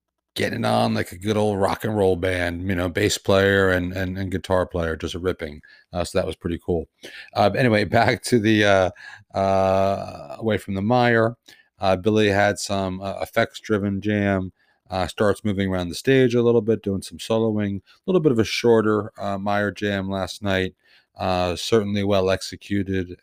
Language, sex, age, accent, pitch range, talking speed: English, male, 40-59, American, 90-105 Hz, 190 wpm